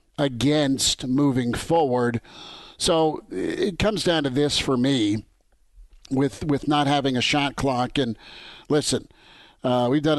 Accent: American